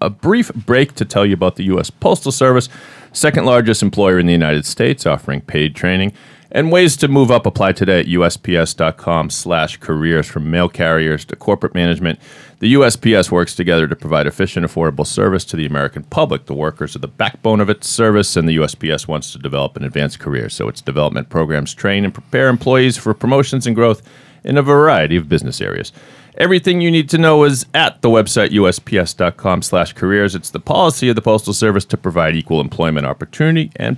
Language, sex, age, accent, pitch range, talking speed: English, male, 40-59, American, 85-125 Hz, 195 wpm